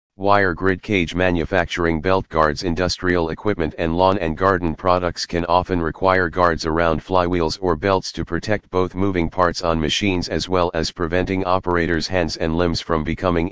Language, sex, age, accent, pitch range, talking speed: English, male, 40-59, American, 80-95 Hz, 170 wpm